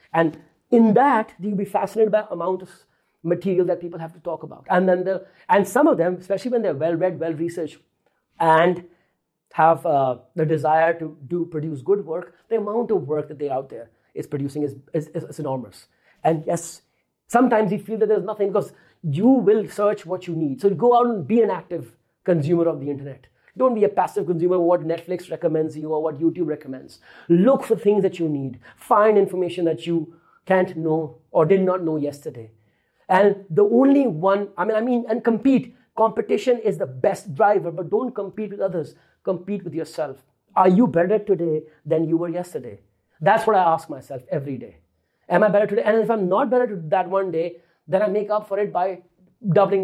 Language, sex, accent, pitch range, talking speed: English, male, Indian, 160-205 Hz, 205 wpm